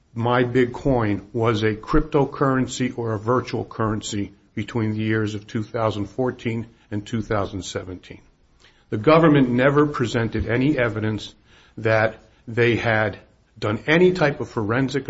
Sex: male